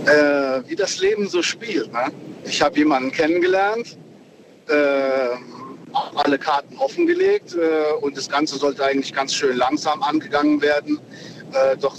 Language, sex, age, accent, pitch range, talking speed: German, male, 50-69, German, 140-165 Hz, 140 wpm